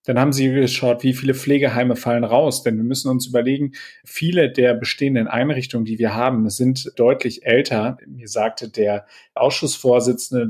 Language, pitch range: German, 120-140 Hz